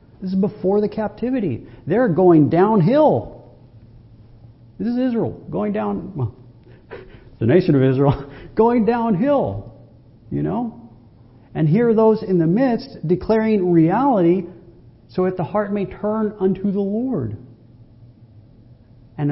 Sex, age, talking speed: male, 50-69, 125 wpm